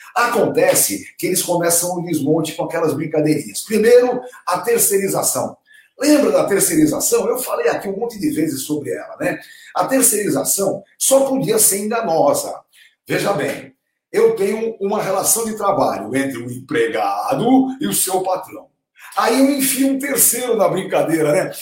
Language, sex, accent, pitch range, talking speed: Portuguese, male, Brazilian, 165-265 Hz, 155 wpm